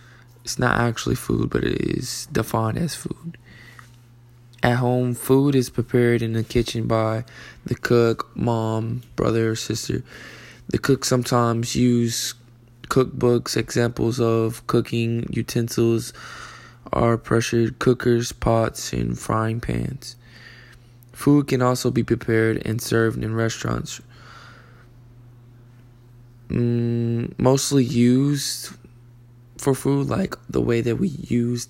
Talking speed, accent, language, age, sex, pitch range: 115 wpm, American, English, 20-39, male, 115-125 Hz